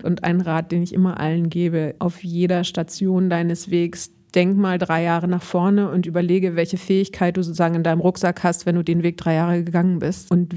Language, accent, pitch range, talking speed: German, German, 175-195 Hz, 215 wpm